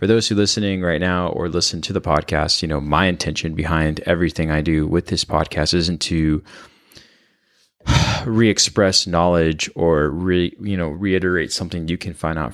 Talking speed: 175 wpm